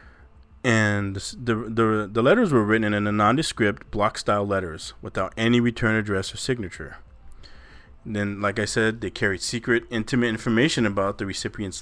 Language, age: English, 20-39